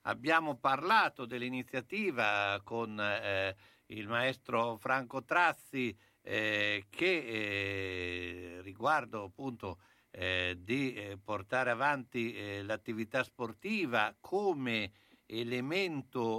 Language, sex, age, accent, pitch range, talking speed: Italian, male, 60-79, native, 95-125 Hz, 90 wpm